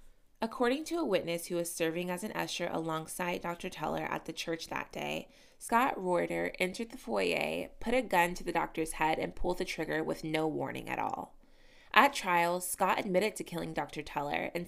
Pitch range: 155-200 Hz